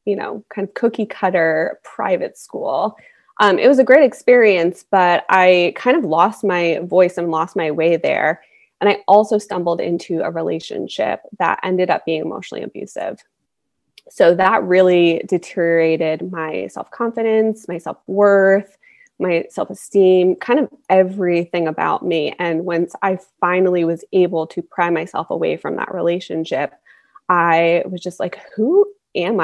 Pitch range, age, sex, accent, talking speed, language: 170-210 Hz, 20-39, female, American, 155 wpm, English